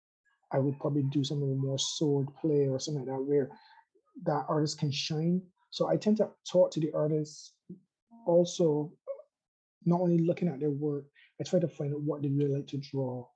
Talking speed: 195 wpm